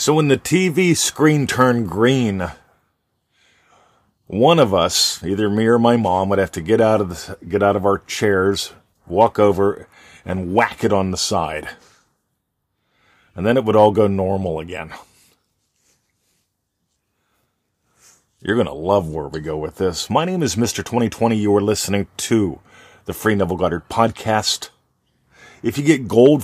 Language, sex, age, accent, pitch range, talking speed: English, male, 40-59, American, 95-115 Hz, 160 wpm